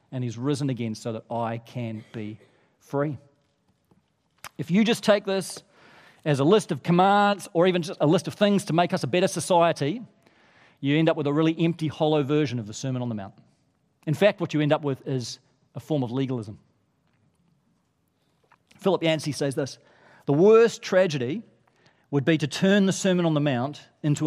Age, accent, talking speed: 40-59, Australian, 190 wpm